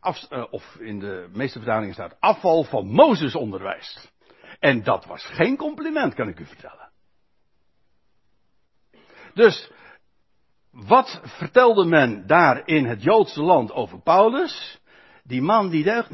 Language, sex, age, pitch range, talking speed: Dutch, male, 60-79, 135-210 Hz, 125 wpm